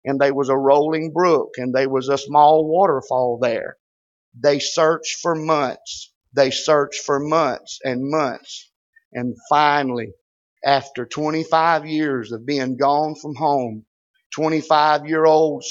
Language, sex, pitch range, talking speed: English, male, 135-165 Hz, 130 wpm